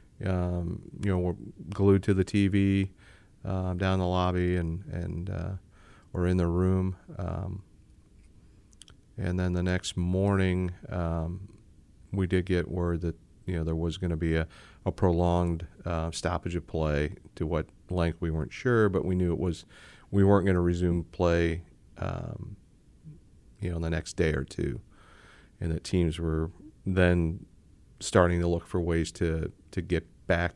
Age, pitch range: 40-59, 85-95 Hz